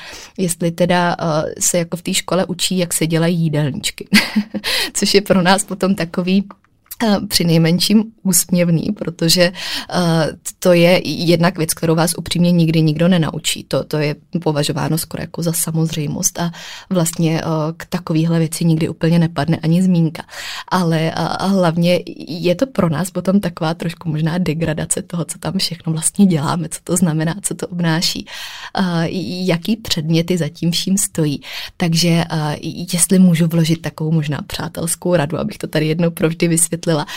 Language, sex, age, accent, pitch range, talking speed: Czech, female, 20-39, native, 160-175 Hz, 155 wpm